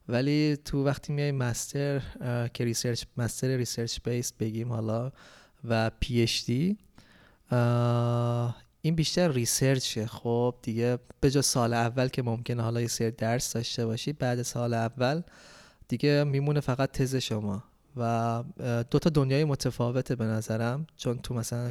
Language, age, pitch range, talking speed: English, 20-39, 115-130 Hz, 140 wpm